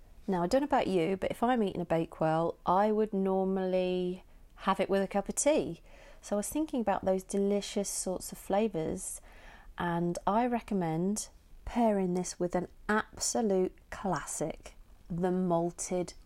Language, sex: English, female